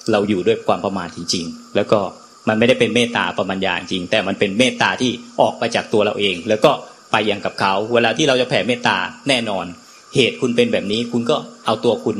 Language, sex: Thai, male